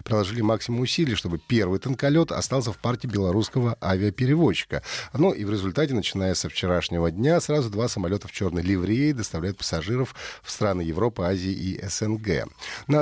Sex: male